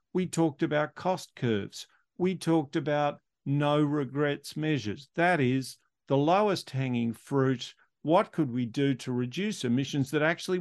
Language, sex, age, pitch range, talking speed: English, male, 50-69, 130-155 Hz, 145 wpm